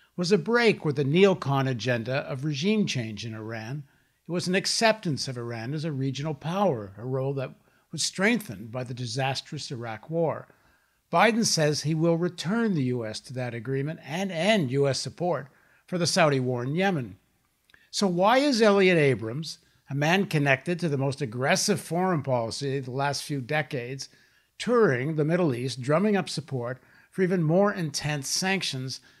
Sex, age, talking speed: male, 60-79, 170 wpm